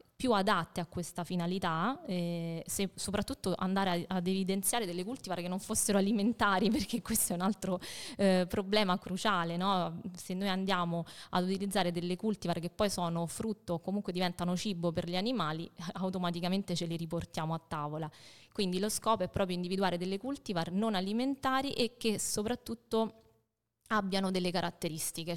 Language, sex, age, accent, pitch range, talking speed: Italian, female, 20-39, native, 175-205 Hz, 155 wpm